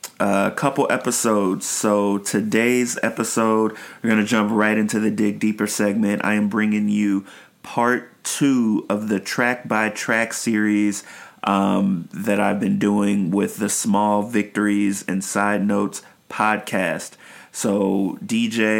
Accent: American